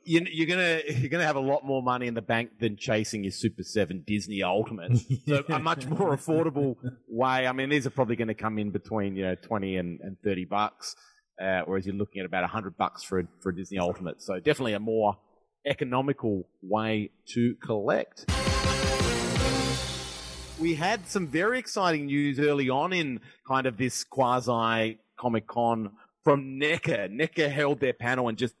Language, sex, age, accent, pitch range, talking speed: English, male, 30-49, Australian, 110-145 Hz, 185 wpm